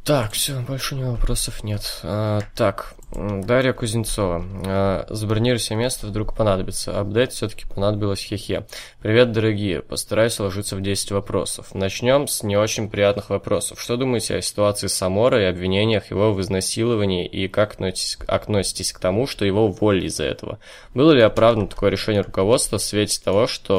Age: 20-39